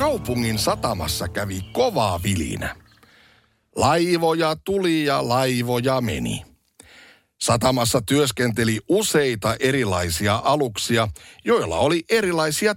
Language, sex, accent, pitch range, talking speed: Finnish, male, native, 110-145 Hz, 85 wpm